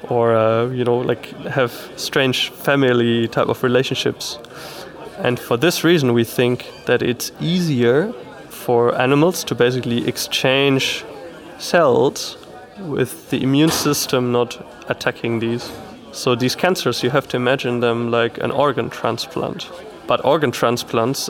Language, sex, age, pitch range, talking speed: Polish, male, 20-39, 120-140 Hz, 130 wpm